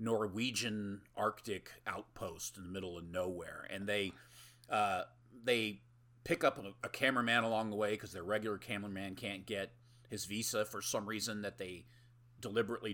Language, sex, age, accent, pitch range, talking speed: English, male, 30-49, American, 95-120 Hz, 160 wpm